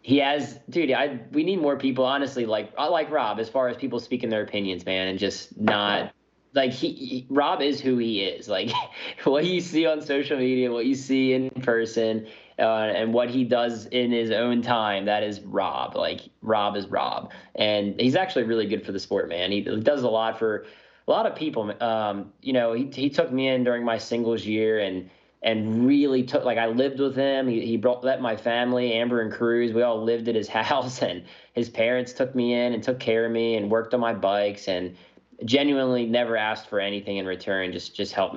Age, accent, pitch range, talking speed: 20-39, American, 105-125 Hz, 220 wpm